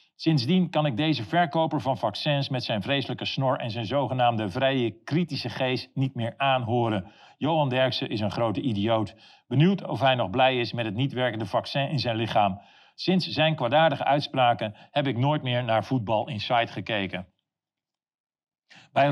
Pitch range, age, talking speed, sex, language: 120-155 Hz, 50-69, 165 wpm, male, Dutch